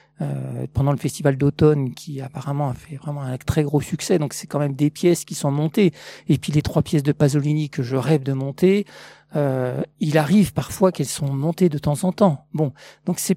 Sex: male